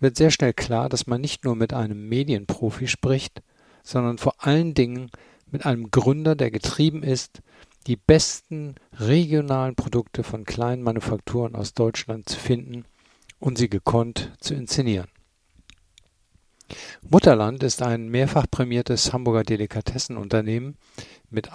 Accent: German